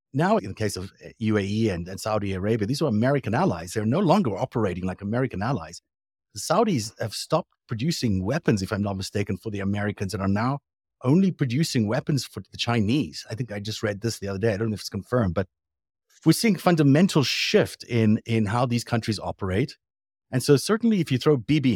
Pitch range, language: 100-135 Hz, English